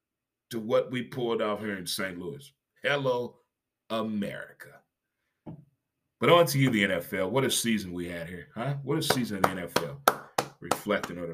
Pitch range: 110-135 Hz